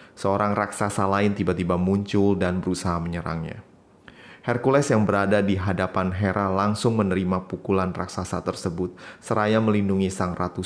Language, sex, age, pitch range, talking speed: Indonesian, male, 30-49, 90-105 Hz, 130 wpm